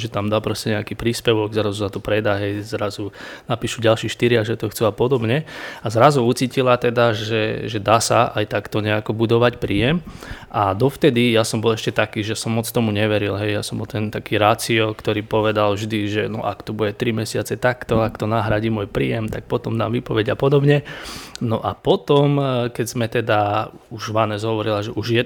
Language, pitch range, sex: Slovak, 110-120 Hz, male